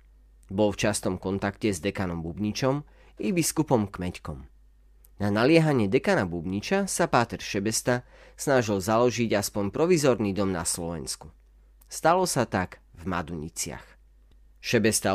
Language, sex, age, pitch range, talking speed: Slovak, male, 30-49, 85-125 Hz, 120 wpm